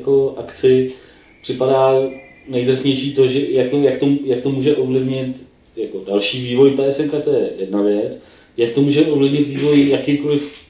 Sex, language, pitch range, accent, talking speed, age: male, Czech, 115-135 Hz, native, 135 wpm, 20-39